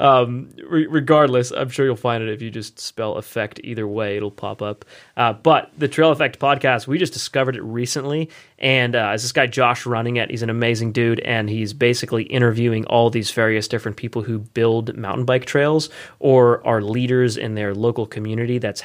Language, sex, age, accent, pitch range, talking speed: English, male, 30-49, American, 105-130 Hz, 200 wpm